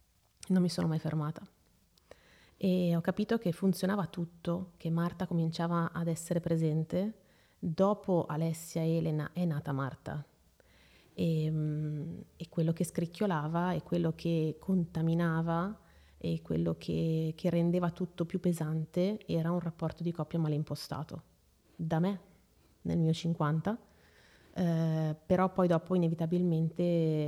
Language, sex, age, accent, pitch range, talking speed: Italian, female, 30-49, native, 155-170 Hz, 130 wpm